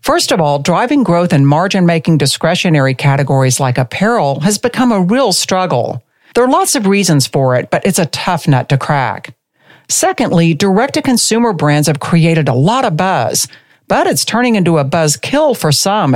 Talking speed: 180 wpm